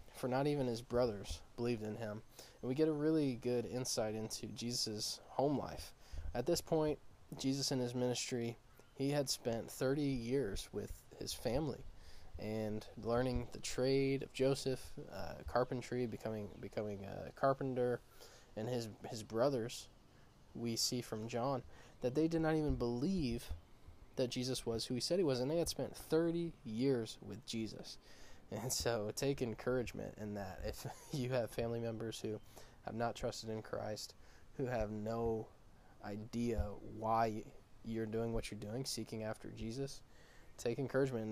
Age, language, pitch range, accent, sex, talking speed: 20-39, English, 110-130 Hz, American, male, 160 wpm